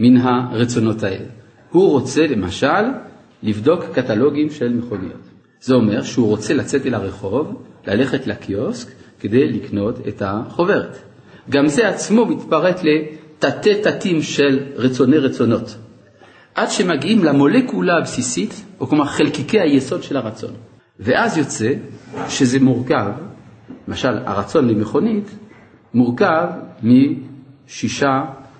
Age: 50-69